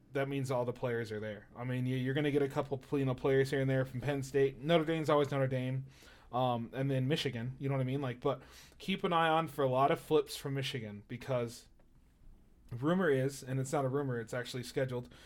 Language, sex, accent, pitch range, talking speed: English, male, American, 125-145 Hz, 240 wpm